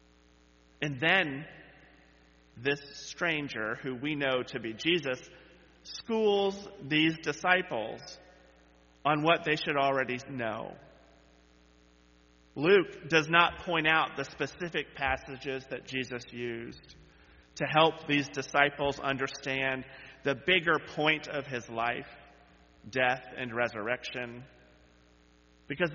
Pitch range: 100-150 Hz